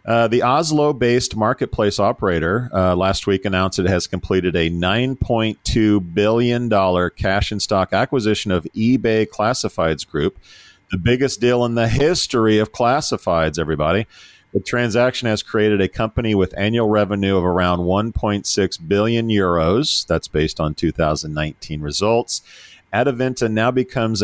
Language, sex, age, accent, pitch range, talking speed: English, male, 40-59, American, 90-115 Hz, 135 wpm